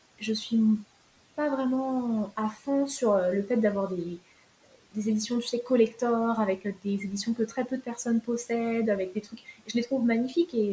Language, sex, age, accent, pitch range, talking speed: French, female, 20-39, French, 200-240 Hz, 185 wpm